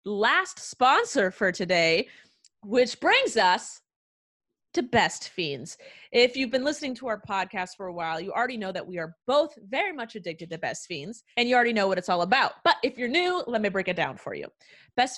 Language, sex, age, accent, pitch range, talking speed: English, female, 30-49, American, 195-275 Hz, 210 wpm